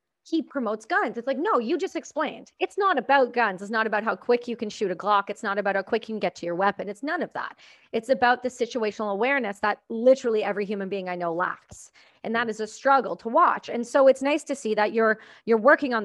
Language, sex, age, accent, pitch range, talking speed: English, female, 30-49, American, 205-265 Hz, 260 wpm